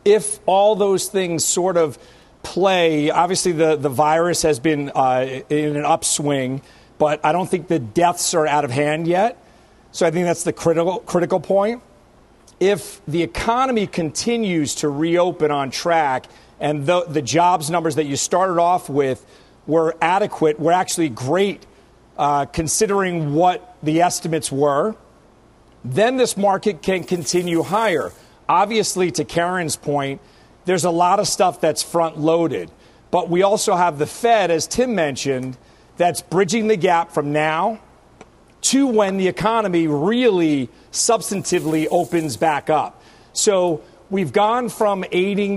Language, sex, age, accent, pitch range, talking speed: English, male, 40-59, American, 155-195 Hz, 145 wpm